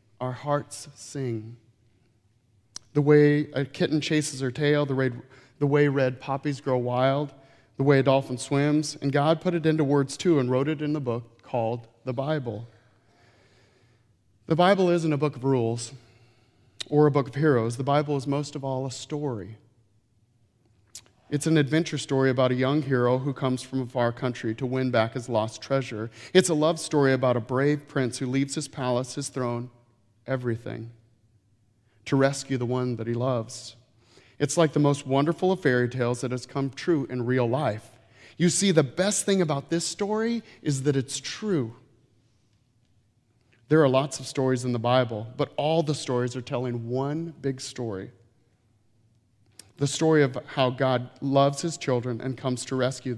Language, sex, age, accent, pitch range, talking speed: English, male, 40-59, American, 115-145 Hz, 175 wpm